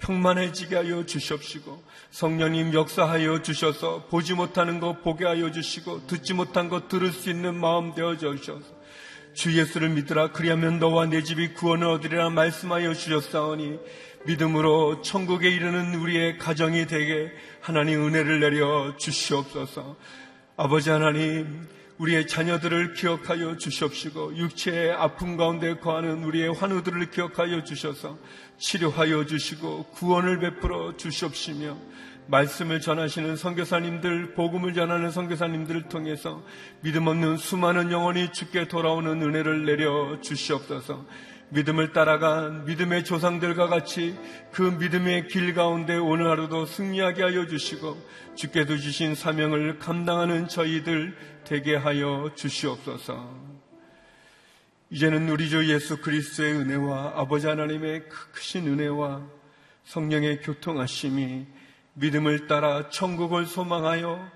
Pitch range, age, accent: 150-175 Hz, 40-59, native